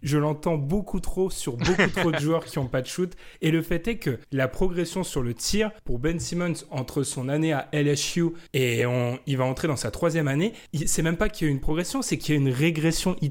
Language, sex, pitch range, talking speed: French, male, 135-170 Hz, 250 wpm